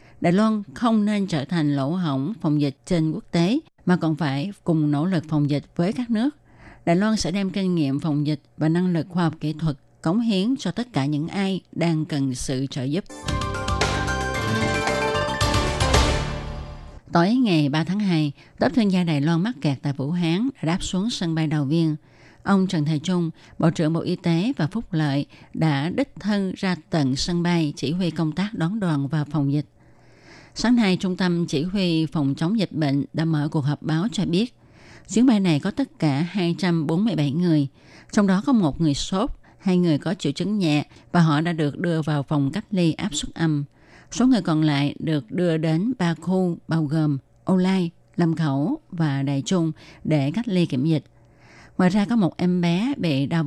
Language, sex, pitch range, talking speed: Vietnamese, female, 145-185 Hz, 200 wpm